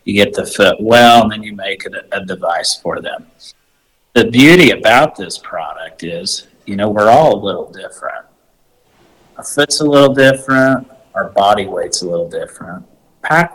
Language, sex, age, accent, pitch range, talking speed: English, male, 50-69, American, 105-135 Hz, 175 wpm